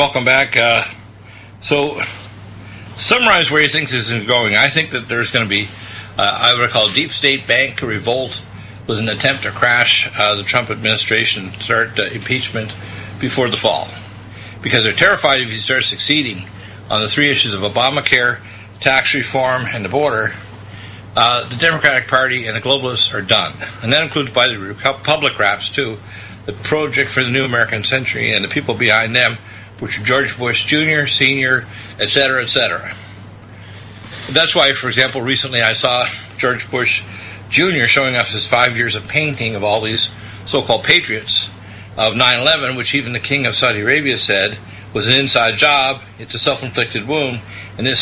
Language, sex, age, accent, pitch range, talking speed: English, male, 60-79, American, 105-130 Hz, 175 wpm